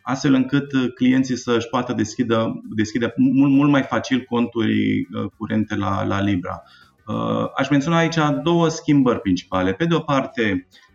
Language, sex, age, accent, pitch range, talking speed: Romanian, male, 20-39, native, 105-140 Hz, 150 wpm